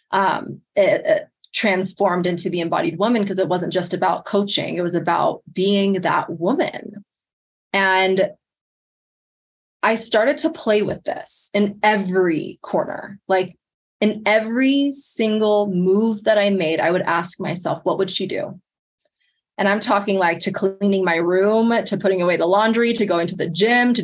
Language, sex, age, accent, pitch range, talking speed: English, female, 20-39, American, 180-225 Hz, 160 wpm